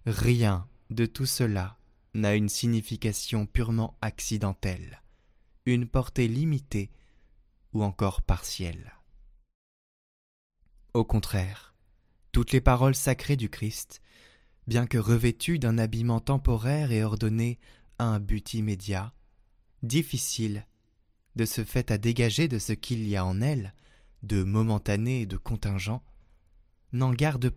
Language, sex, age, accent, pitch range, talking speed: French, male, 20-39, French, 100-125 Hz, 120 wpm